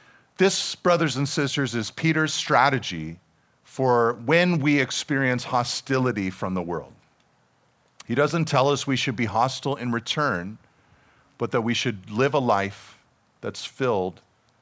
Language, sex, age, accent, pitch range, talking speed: English, male, 40-59, American, 125-165 Hz, 140 wpm